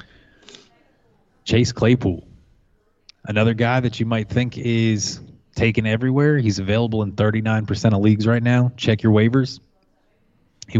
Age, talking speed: 20-39, 130 wpm